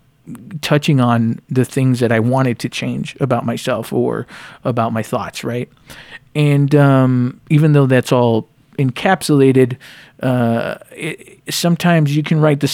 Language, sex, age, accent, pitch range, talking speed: English, male, 40-59, American, 125-145 Hz, 135 wpm